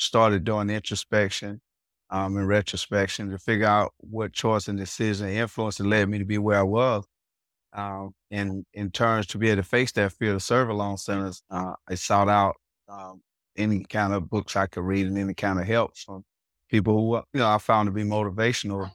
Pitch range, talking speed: 100-115 Hz, 205 wpm